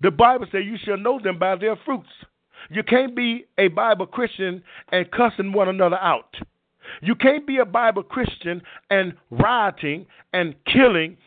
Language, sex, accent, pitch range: English, male, American, 185-245 Hz